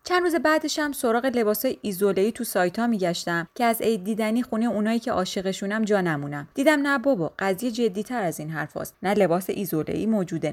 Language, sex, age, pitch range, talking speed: Persian, female, 30-49, 200-260 Hz, 195 wpm